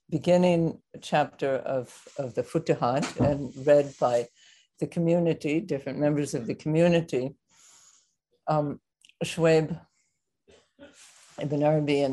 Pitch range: 140-165 Hz